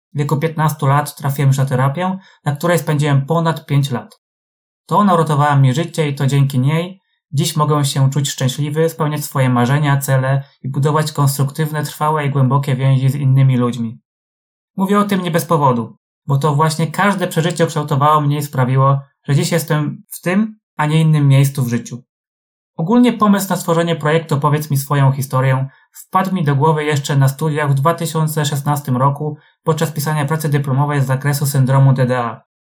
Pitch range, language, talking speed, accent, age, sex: 135-160 Hz, Polish, 170 wpm, native, 20-39, male